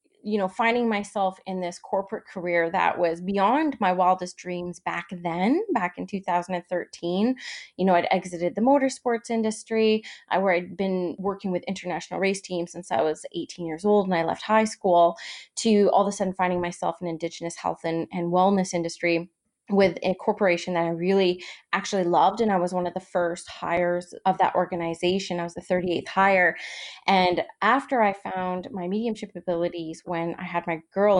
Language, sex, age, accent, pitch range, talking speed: English, female, 20-39, American, 175-200 Hz, 185 wpm